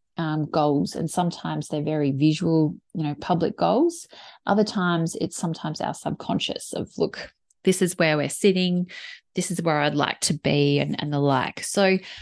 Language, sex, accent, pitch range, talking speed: English, female, Australian, 155-190 Hz, 175 wpm